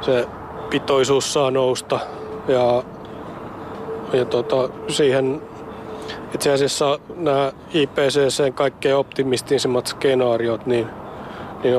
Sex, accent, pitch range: male, native, 120-140 Hz